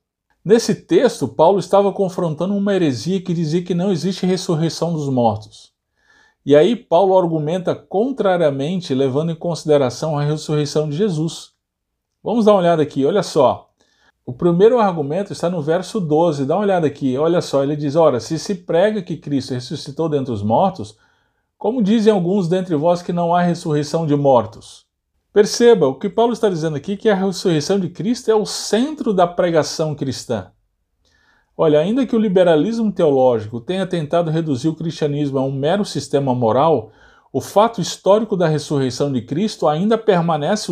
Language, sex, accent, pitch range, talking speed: Portuguese, male, Brazilian, 145-195 Hz, 165 wpm